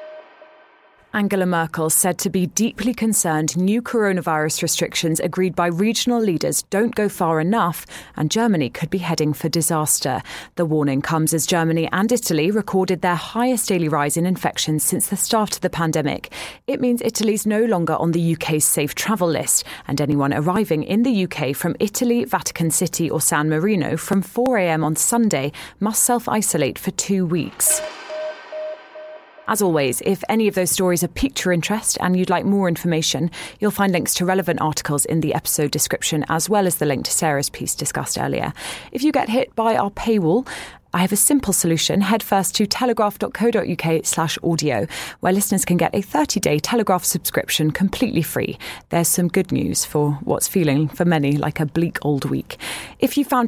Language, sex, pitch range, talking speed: English, female, 160-220 Hz, 180 wpm